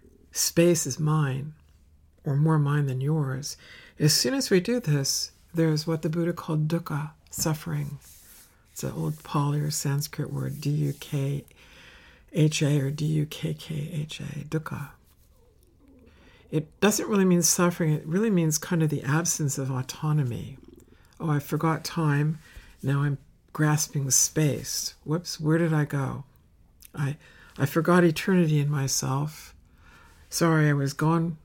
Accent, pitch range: American, 135-160 Hz